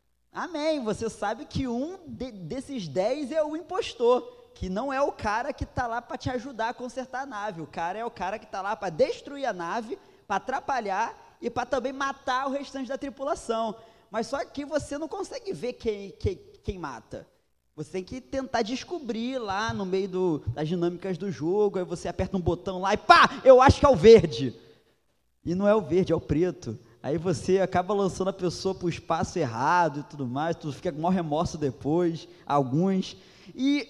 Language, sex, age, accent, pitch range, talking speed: Portuguese, male, 20-39, Brazilian, 165-260 Hz, 200 wpm